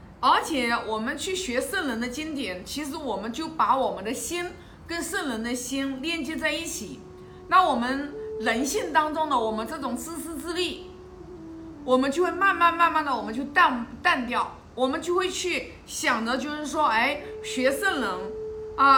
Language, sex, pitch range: Chinese, female, 245-370 Hz